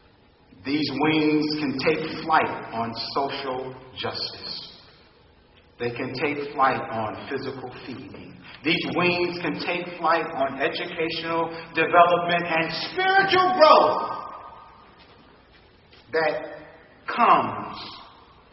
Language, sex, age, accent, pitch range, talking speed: English, male, 50-69, American, 100-160 Hz, 90 wpm